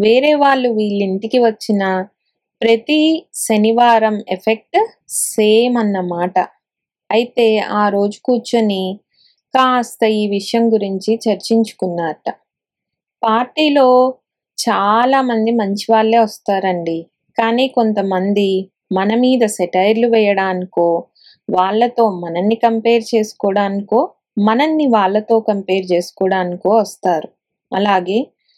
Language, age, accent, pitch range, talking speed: Telugu, 20-39, native, 195-235 Hz, 85 wpm